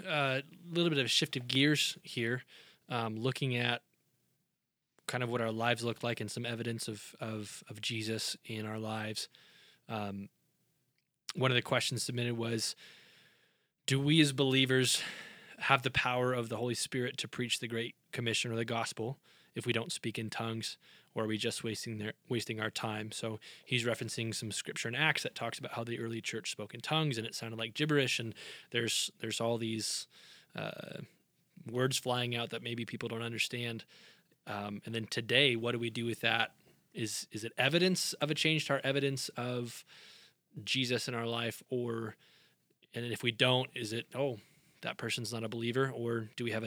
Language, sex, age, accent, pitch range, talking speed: English, male, 20-39, American, 115-130 Hz, 190 wpm